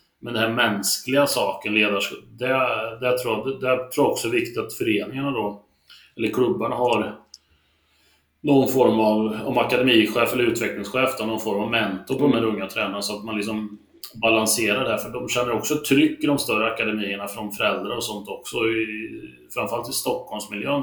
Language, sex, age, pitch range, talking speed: Swedish, male, 30-49, 105-130 Hz, 185 wpm